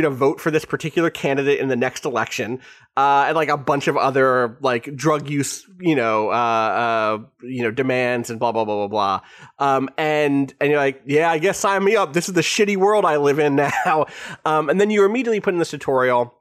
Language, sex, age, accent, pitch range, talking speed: English, male, 30-49, American, 130-160 Hz, 225 wpm